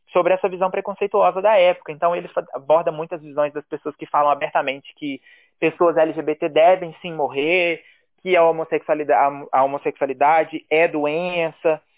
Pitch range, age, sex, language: 150-190 Hz, 20-39, male, Portuguese